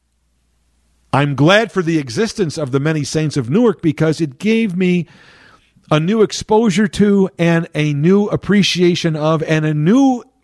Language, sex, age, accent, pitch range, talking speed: English, male, 50-69, American, 120-190 Hz, 155 wpm